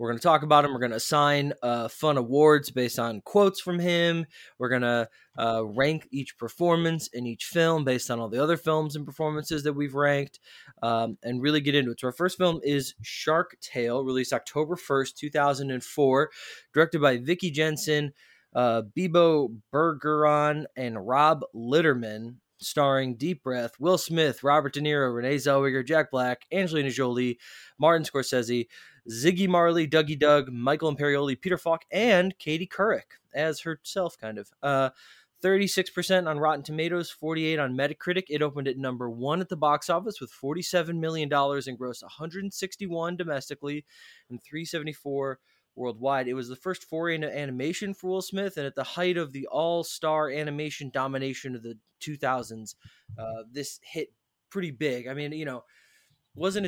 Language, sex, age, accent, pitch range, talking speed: English, male, 20-39, American, 130-165 Hz, 165 wpm